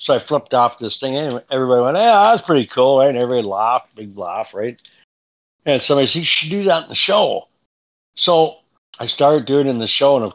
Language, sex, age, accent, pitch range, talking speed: English, male, 60-79, American, 105-135 Hz, 230 wpm